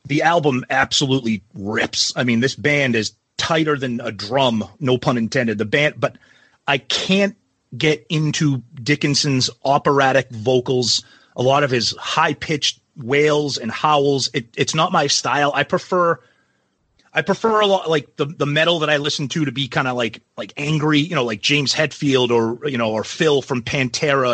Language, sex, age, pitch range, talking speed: English, male, 30-49, 125-160 Hz, 180 wpm